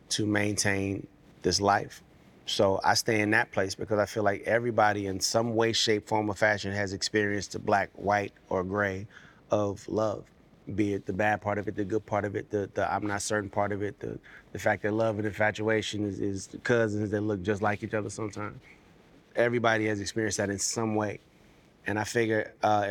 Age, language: 30-49, English